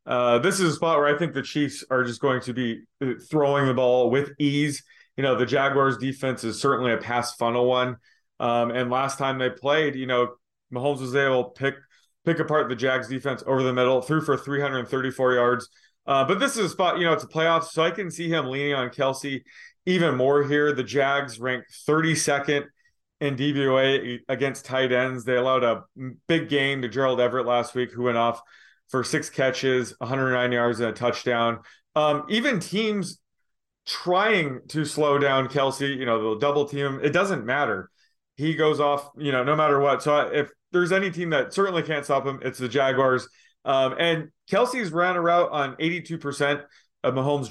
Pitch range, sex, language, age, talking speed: 125-150 Hz, male, English, 30-49, 195 wpm